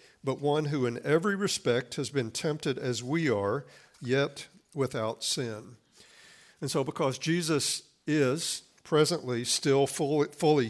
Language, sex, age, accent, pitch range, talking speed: English, male, 60-79, American, 120-150 Hz, 130 wpm